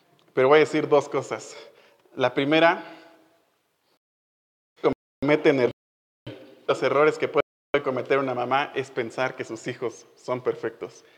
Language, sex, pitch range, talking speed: Spanish, male, 130-165 Hz, 120 wpm